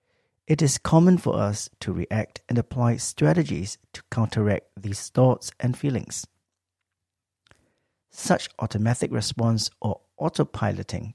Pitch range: 100-125 Hz